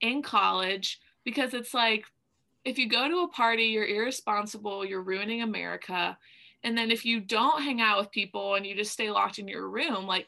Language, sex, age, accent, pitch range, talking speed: English, female, 20-39, American, 210-265 Hz, 200 wpm